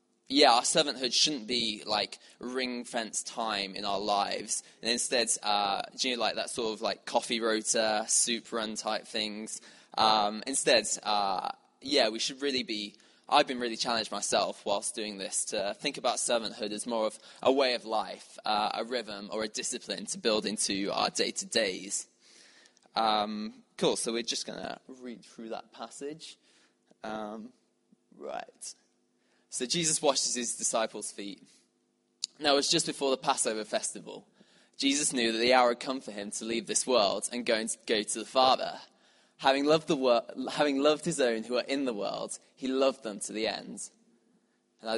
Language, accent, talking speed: English, British, 175 wpm